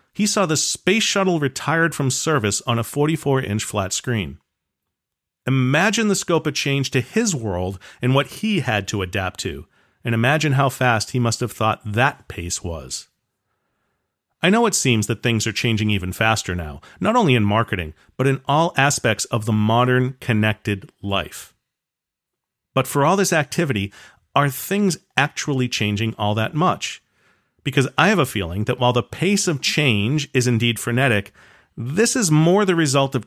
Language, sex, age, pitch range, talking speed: English, male, 40-59, 105-155 Hz, 170 wpm